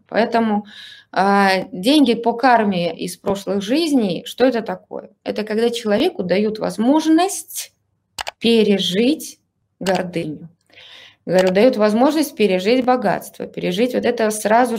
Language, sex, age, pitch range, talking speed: Russian, female, 20-39, 185-235 Hz, 115 wpm